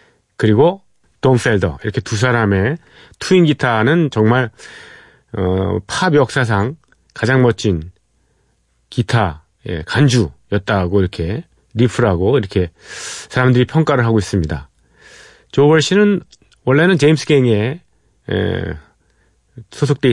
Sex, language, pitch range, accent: male, Korean, 95-135 Hz, native